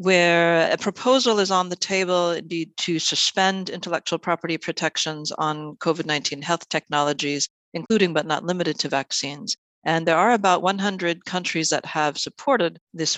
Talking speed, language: 145 wpm, English